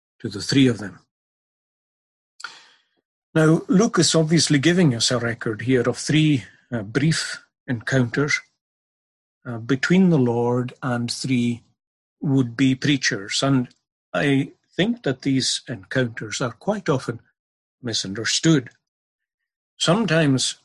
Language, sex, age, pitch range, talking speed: English, male, 50-69, 120-150 Hz, 110 wpm